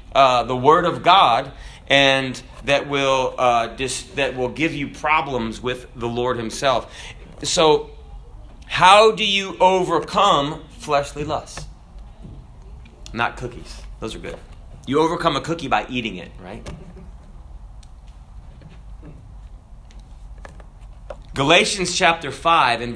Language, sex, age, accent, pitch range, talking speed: English, male, 30-49, American, 125-170 Hz, 110 wpm